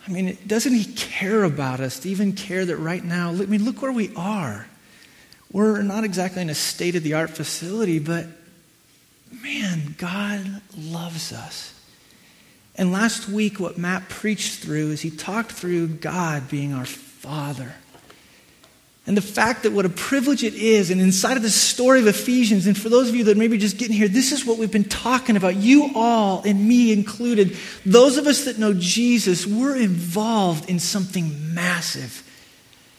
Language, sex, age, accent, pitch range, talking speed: English, male, 30-49, American, 180-225 Hz, 180 wpm